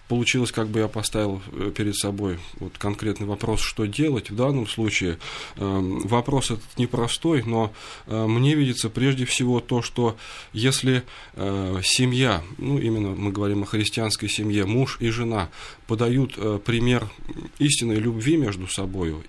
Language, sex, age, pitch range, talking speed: Russian, male, 20-39, 100-125 Hz, 145 wpm